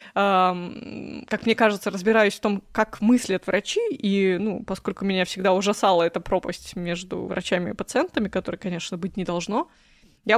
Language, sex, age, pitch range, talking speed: Russian, female, 20-39, 190-225 Hz, 155 wpm